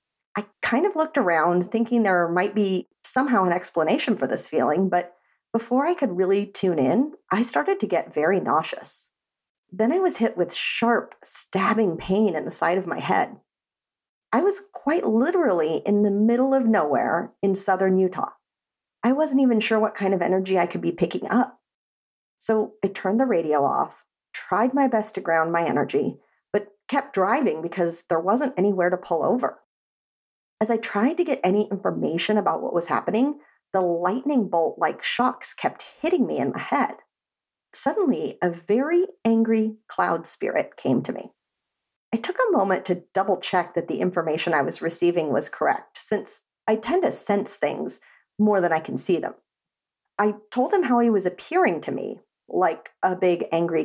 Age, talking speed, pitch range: 40-59, 175 wpm, 180-255 Hz